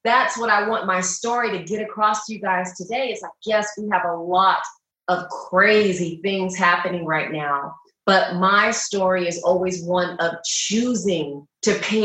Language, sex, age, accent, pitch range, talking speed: English, female, 30-49, American, 180-215 Hz, 180 wpm